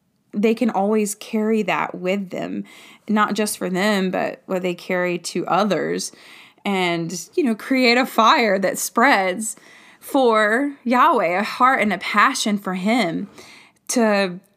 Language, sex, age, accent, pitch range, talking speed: English, female, 20-39, American, 195-245 Hz, 145 wpm